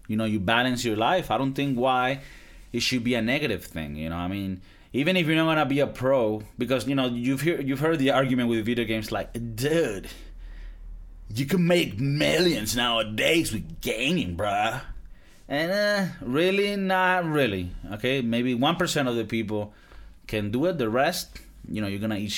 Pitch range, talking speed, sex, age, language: 100-140 Hz, 195 wpm, male, 30-49, English